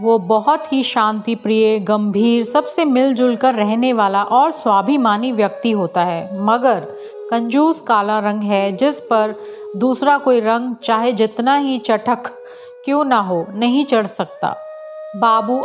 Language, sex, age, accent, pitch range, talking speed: Hindi, female, 40-59, native, 215-285 Hz, 140 wpm